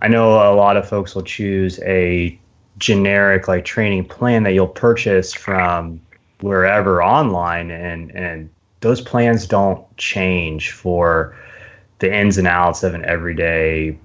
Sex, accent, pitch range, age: male, American, 85-105 Hz, 20-39